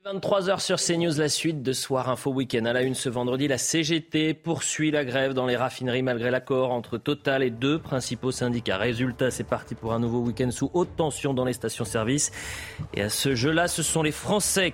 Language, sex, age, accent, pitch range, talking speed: French, male, 30-49, French, 110-145 Hz, 210 wpm